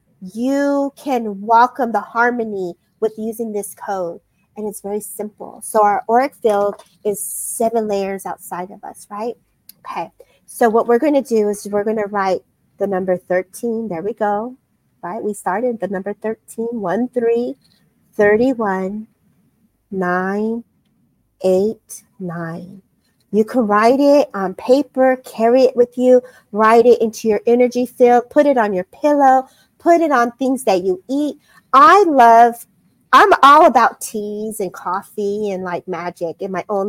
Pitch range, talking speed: 200-245 Hz, 150 wpm